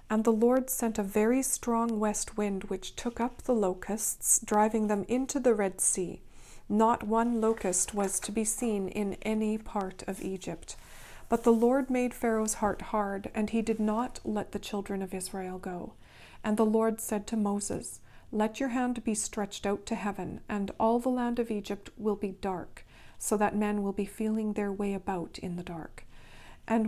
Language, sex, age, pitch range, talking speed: English, female, 40-59, 195-230 Hz, 190 wpm